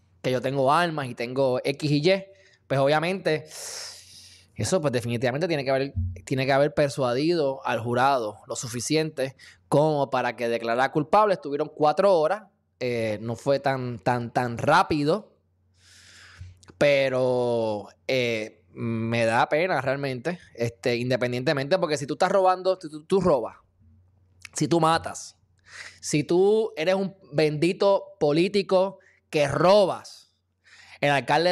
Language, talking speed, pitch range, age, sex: Spanish, 130 wpm, 120-185 Hz, 20-39, male